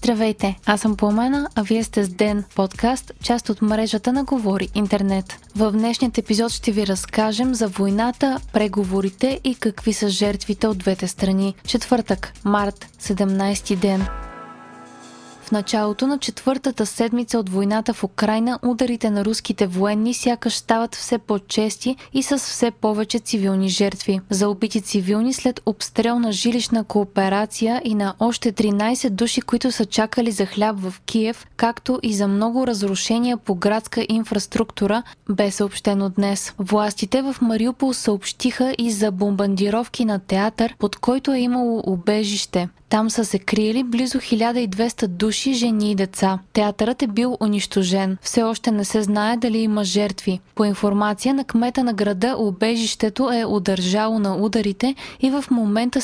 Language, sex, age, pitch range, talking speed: Bulgarian, female, 20-39, 205-235 Hz, 150 wpm